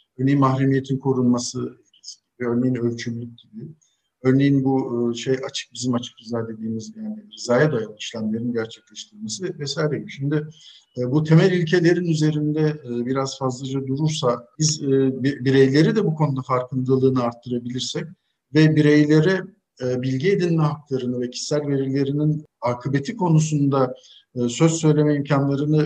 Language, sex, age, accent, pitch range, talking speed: Turkish, male, 50-69, native, 125-155 Hz, 110 wpm